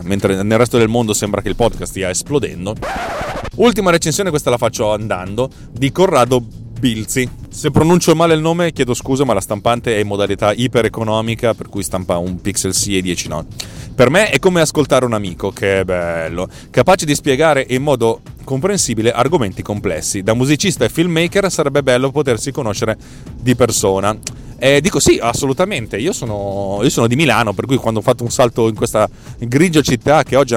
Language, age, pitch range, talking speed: Italian, 30-49, 100-135 Hz, 185 wpm